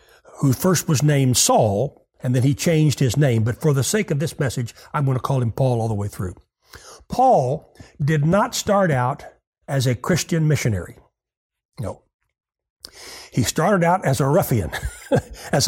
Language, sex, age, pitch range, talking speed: English, male, 60-79, 140-215 Hz, 170 wpm